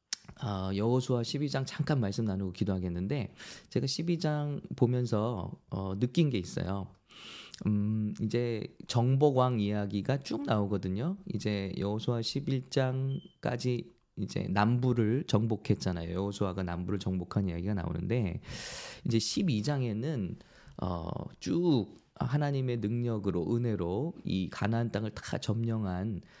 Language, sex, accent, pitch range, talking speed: English, male, Korean, 100-130 Hz, 95 wpm